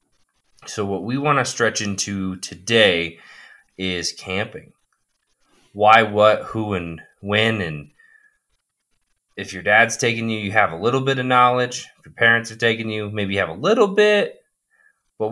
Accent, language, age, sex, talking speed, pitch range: American, English, 20-39, male, 160 wpm, 100-125 Hz